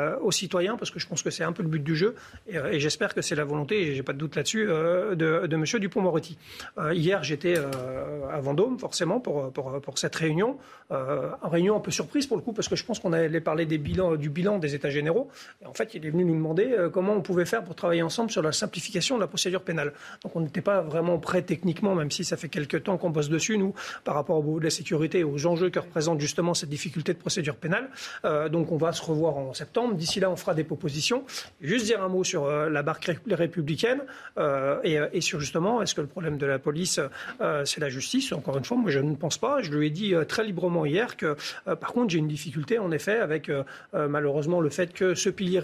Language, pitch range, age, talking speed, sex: French, 155-195 Hz, 40-59, 250 wpm, male